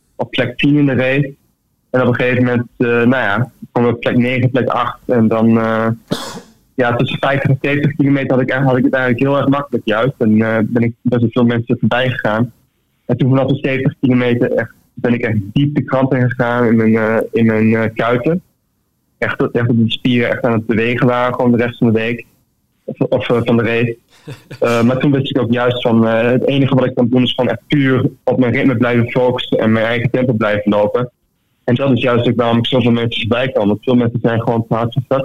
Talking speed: 240 wpm